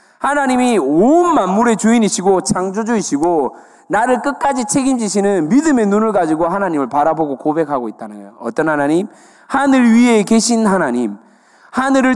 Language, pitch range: Korean, 160-225 Hz